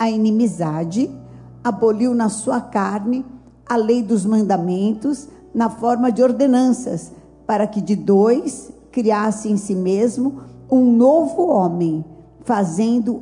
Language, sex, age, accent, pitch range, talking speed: Portuguese, female, 50-69, Brazilian, 205-260 Hz, 120 wpm